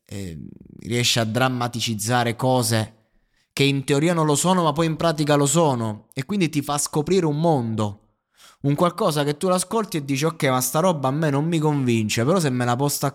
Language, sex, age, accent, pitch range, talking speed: Italian, male, 20-39, native, 110-150 Hz, 205 wpm